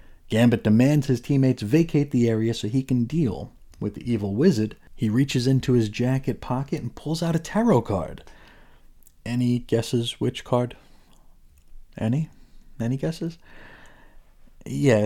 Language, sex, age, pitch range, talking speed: English, male, 30-49, 100-135 Hz, 140 wpm